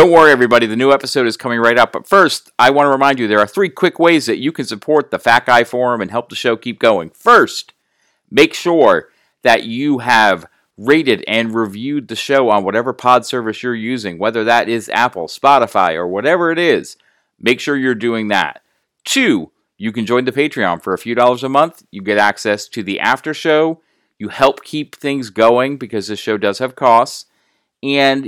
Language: English